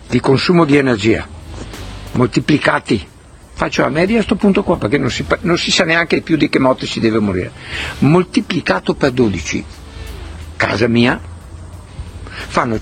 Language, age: Italian, 60-79